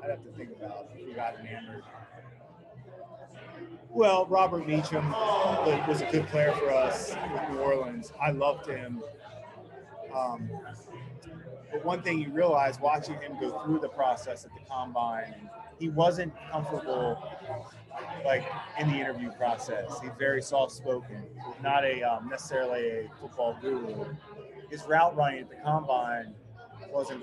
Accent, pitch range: American, 125-155 Hz